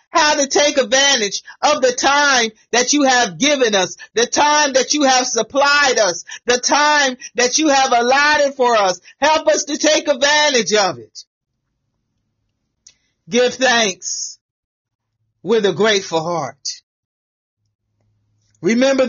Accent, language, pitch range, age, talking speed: American, English, 195-280 Hz, 40-59, 130 wpm